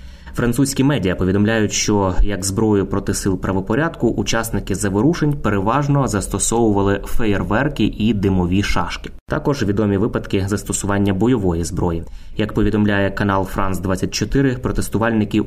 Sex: male